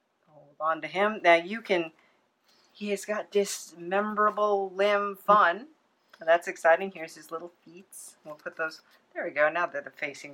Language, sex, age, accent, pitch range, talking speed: English, female, 40-59, American, 175-215 Hz, 155 wpm